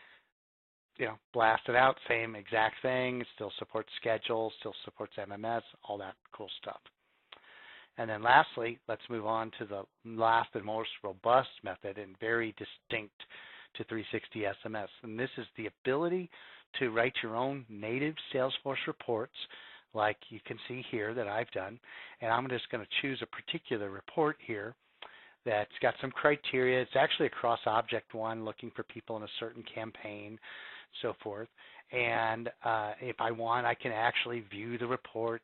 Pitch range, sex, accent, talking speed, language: 110-125 Hz, male, American, 165 wpm, English